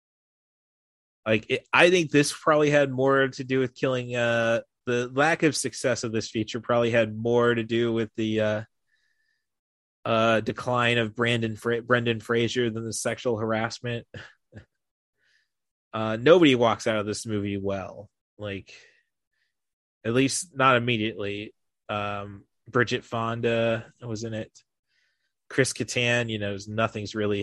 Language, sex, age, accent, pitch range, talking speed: English, male, 30-49, American, 105-125 Hz, 140 wpm